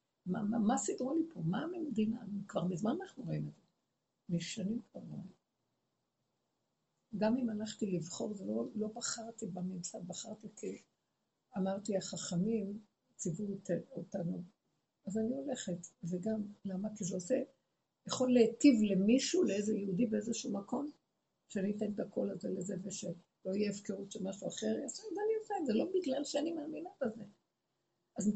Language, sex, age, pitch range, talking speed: Hebrew, female, 50-69, 180-255 Hz, 145 wpm